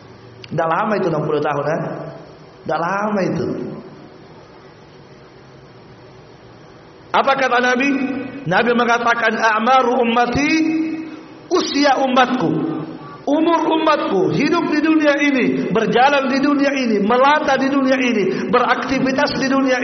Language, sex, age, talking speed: Indonesian, male, 50-69, 105 wpm